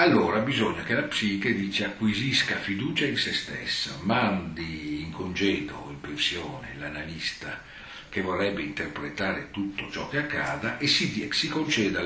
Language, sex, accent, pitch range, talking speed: Italian, male, native, 95-115 Hz, 145 wpm